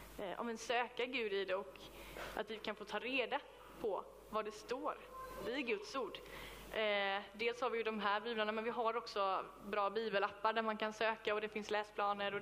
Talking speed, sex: 215 wpm, female